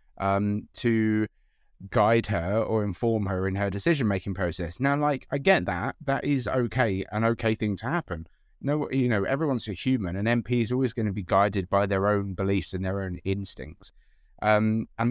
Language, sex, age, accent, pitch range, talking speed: English, male, 30-49, British, 95-115 Hz, 195 wpm